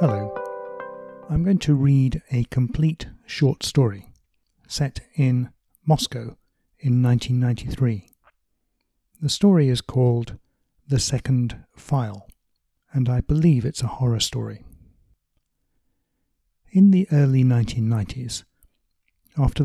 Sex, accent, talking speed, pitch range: male, British, 100 wpm, 115-140 Hz